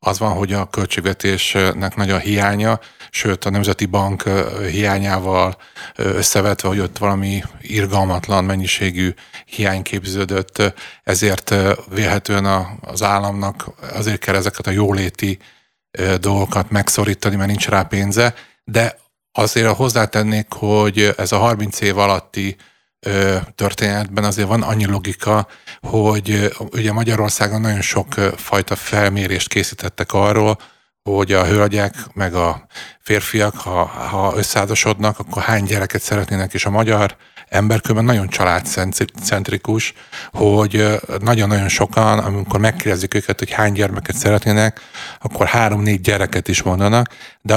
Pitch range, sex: 100-110 Hz, male